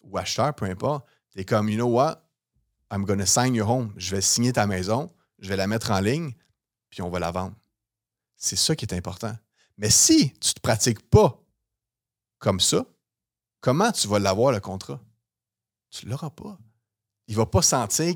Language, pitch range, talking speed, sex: French, 105-135 Hz, 200 wpm, male